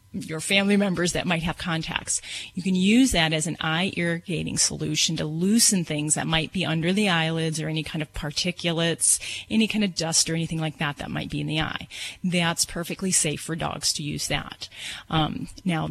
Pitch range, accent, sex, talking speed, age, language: 160-185 Hz, American, female, 205 wpm, 30-49, English